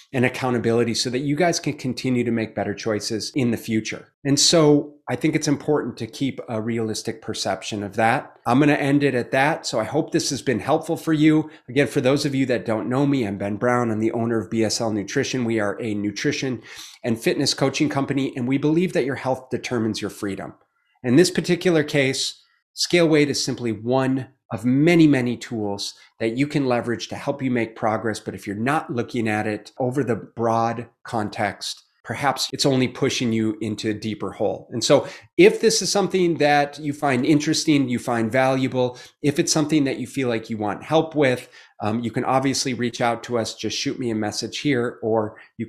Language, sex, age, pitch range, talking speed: English, male, 30-49, 115-145 Hz, 210 wpm